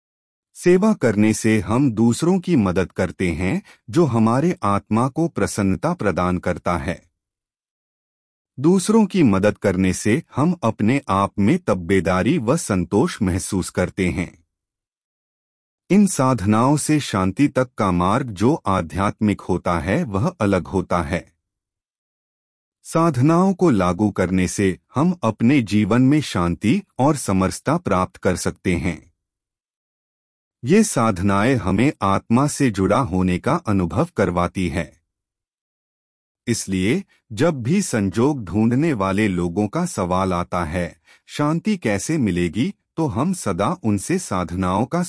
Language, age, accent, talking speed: Hindi, 30-49, native, 125 wpm